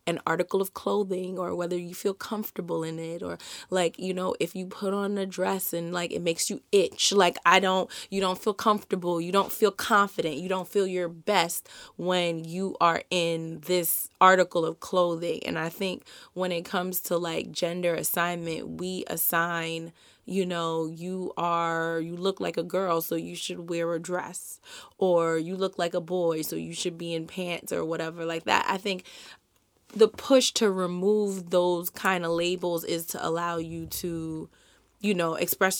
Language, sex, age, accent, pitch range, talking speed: English, female, 20-39, American, 165-185 Hz, 190 wpm